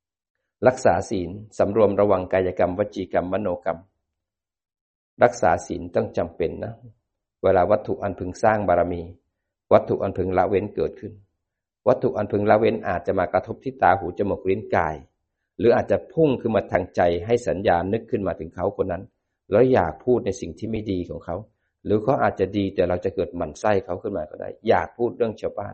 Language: Thai